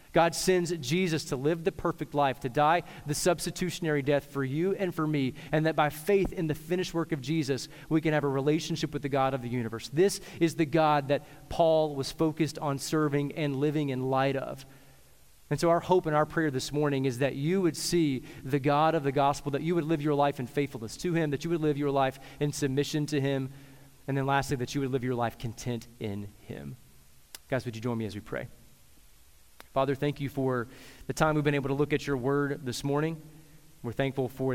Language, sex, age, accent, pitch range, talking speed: English, male, 30-49, American, 125-150 Hz, 230 wpm